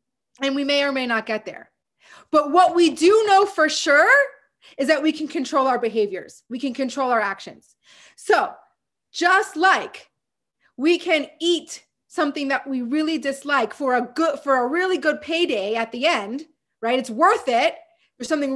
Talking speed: 180 wpm